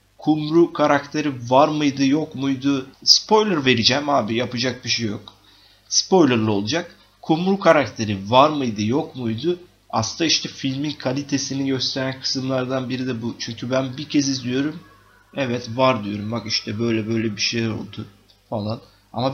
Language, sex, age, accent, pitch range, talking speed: Turkish, male, 30-49, native, 115-140 Hz, 145 wpm